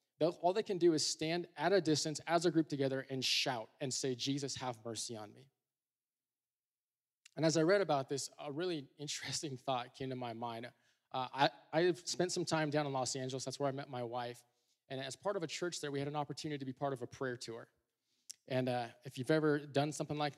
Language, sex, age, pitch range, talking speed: English, male, 20-39, 130-155 Hz, 235 wpm